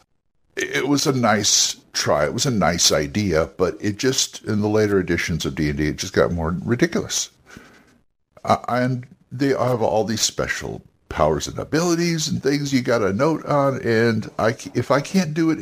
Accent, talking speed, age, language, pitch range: American, 185 wpm, 60-79, English, 95-130 Hz